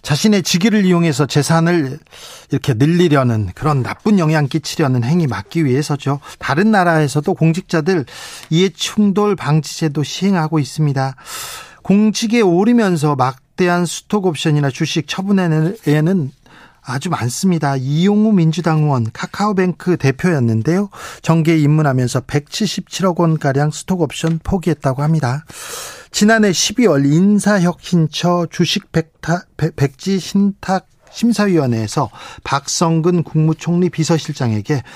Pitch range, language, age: 145-190 Hz, Korean, 40-59